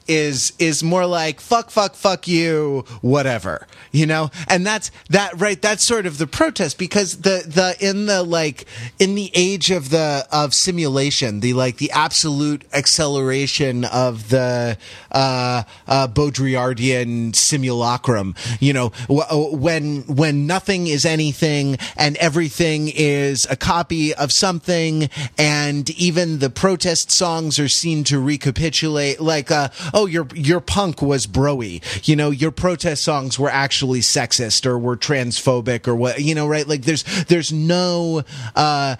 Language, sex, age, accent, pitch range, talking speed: English, male, 30-49, American, 130-165 Hz, 150 wpm